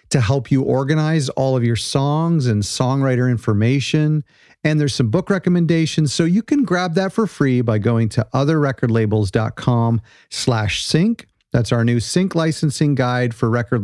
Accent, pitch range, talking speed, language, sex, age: American, 120-160 Hz, 160 wpm, English, male, 40-59